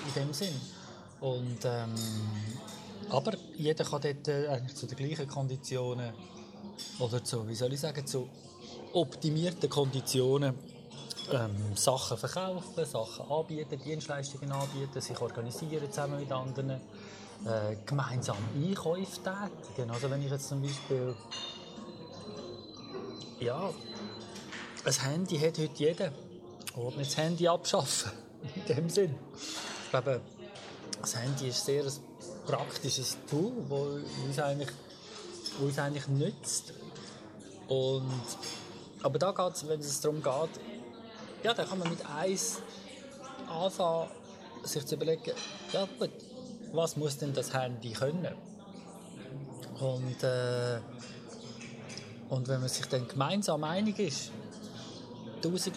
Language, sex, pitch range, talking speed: German, male, 125-170 Hz, 115 wpm